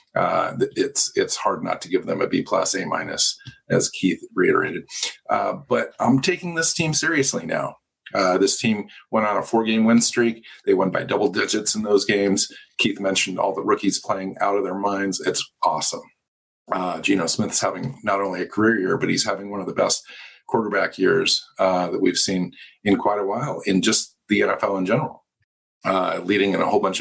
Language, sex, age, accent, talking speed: English, male, 50-69, American, 205 wpm